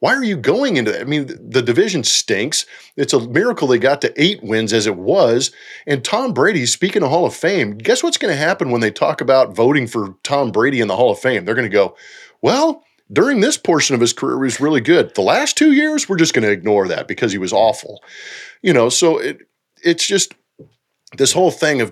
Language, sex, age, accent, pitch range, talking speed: English, male, 40-59, American, 120-190 Hz, 240 wpm